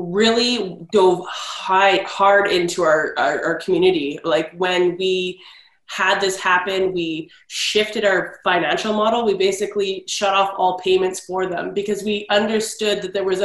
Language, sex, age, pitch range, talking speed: English, female, 20-39, 185-210 Hz, 150 wpm